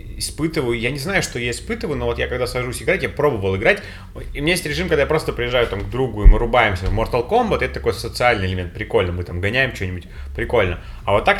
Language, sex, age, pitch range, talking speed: Russian, male, 30-49, 100-150 Hz, 250 wpm